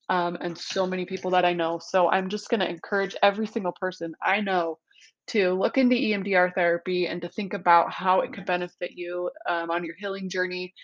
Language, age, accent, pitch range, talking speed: English, 20-39, American, 175-210 Hz, 205 wpm